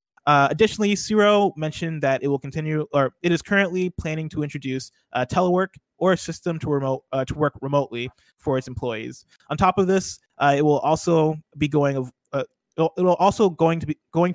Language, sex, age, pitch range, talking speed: English, male, 20-39, 130-165 Hz, 200 wpm